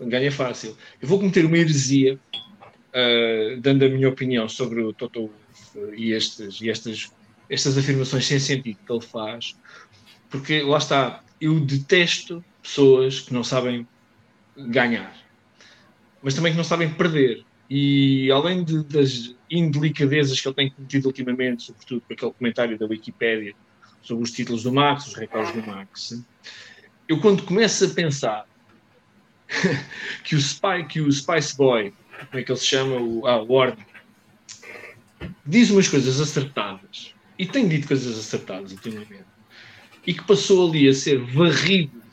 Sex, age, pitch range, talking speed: male, 20-39, 120-160 Hz, 155 wpm